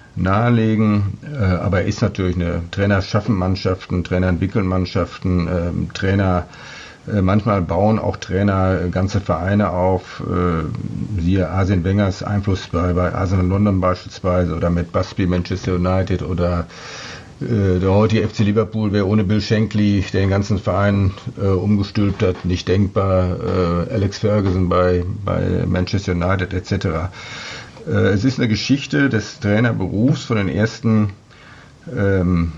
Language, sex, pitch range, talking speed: German, male, 90-110 Hz, 120 wpm